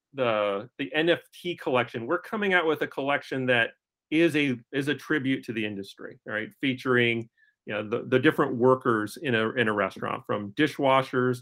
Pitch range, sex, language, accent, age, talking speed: 120-155 Hz, male, English, American, 40-59, 180 wpm